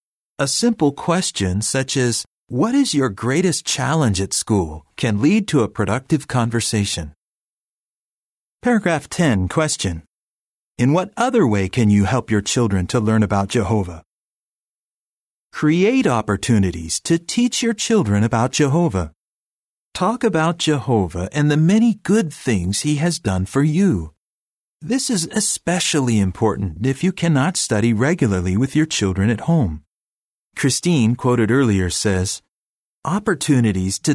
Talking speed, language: 130 wpm, English